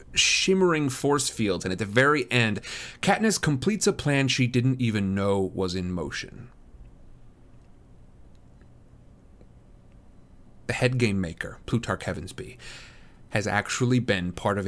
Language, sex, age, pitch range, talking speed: English, male, 30-49, 95-125 Hz, 125 wpm